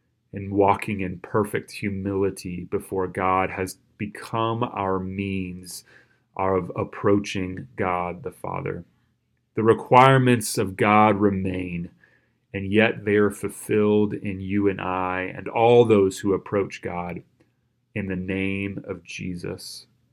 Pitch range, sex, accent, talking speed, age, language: 95-115 Hz, male, American, 120 wpm, 30-49, English